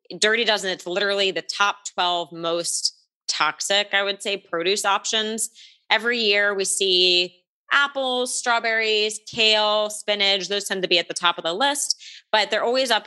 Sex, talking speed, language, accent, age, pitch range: female, 160 wpm, English, American, 20-39, 170-215 Hz